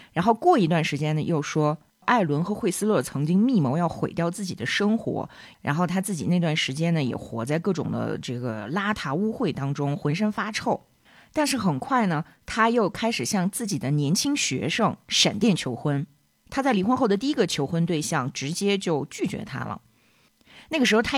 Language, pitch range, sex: Chinese, 150-220 Hz, female